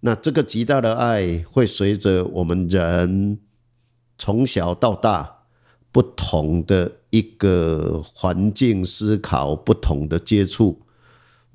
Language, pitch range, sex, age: Chinese, 85-120 Hz, male, 50-69